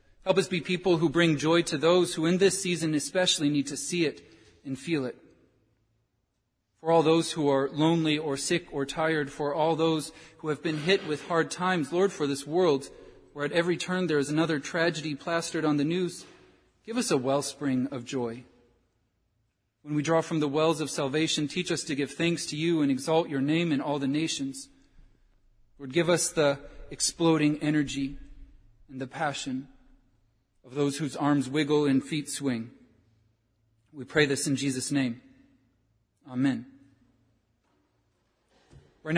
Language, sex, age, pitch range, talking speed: English, male, 40-59, 135-165 Hz, 170 wpm